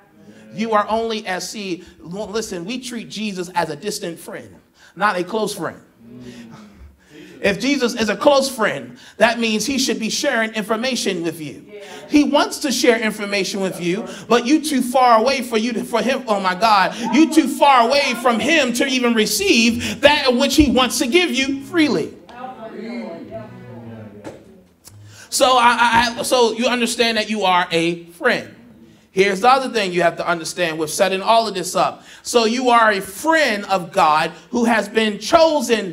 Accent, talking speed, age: American, 175 wpm, 30-49